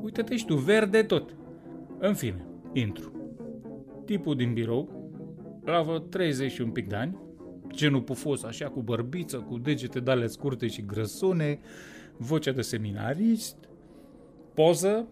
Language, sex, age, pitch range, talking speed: Romanian, male, 30-49, 100-145 Hz, 125 wpm